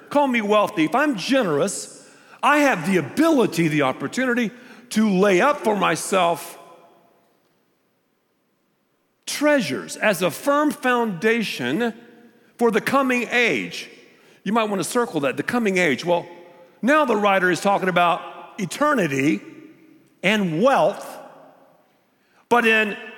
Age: 50-69